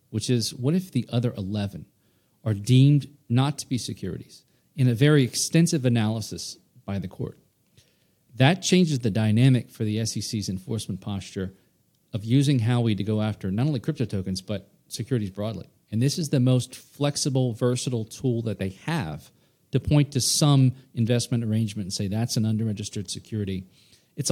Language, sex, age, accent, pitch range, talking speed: English, male, 40-59, American, 105-140 Hz, 165 wpm